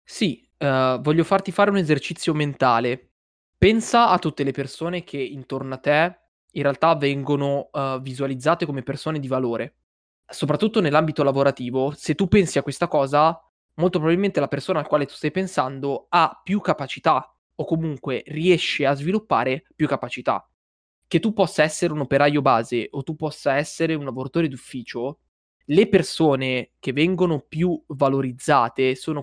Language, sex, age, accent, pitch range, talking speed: Italian, male, 20-39, native, 135-165 Hz, 150 wpm